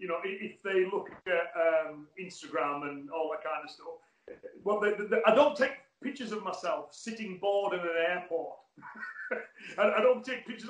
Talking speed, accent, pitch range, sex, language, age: 190 wpm, British, 170-230 Hz, male, English, 30-49